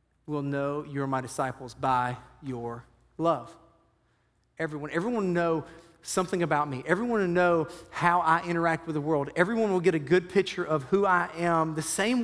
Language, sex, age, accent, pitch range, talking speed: English, male, 40-59, American, 165-200 Hz, 175 wpm